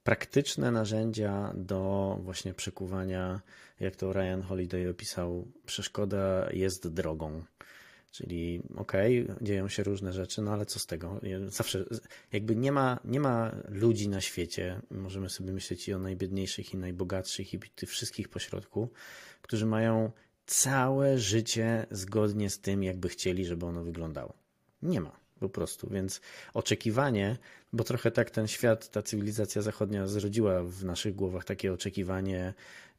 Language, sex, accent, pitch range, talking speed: Polish, male, native, 95-110 Hz, 140 wpm